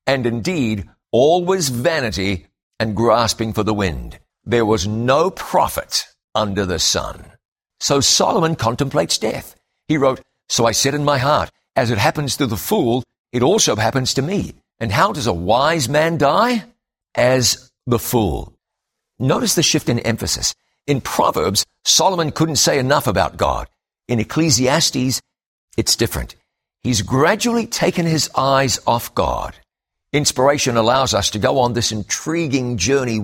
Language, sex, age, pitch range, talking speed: English, male, 60-79, 110-145 Hz, 150 wpm